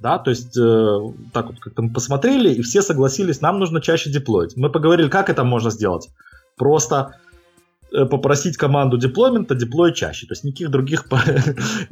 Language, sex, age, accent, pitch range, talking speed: Russian, male, 20-39, native, 120-155 Hz, 170 wpm